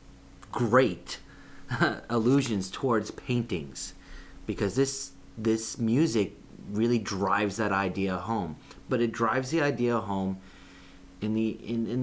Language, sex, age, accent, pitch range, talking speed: English, male, 30-49, American, 95-130 Hz, 115 wpm